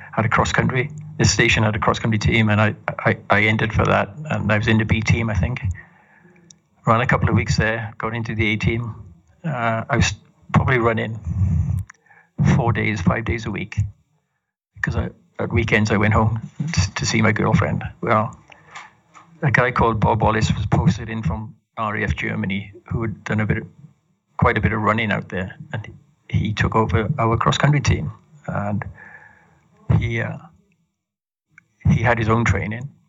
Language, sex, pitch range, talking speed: English, male, 105-125 Hz, 180 wpm